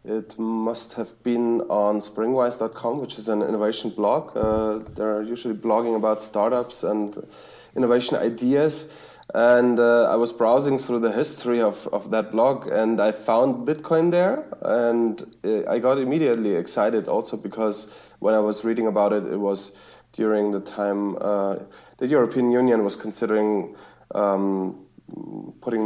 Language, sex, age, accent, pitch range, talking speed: English, male, 30-49, German, 105-125 Hz, 145 wpm